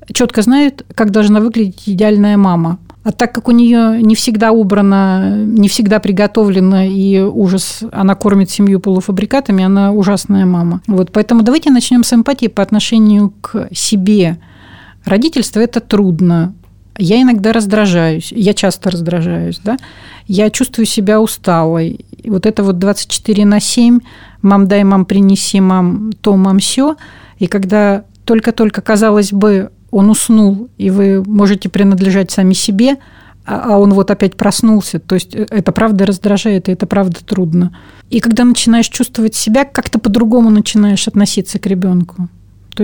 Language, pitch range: Russian, 195-225 Hz